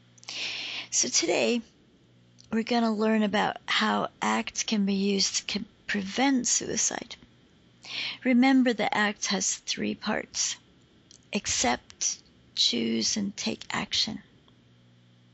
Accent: American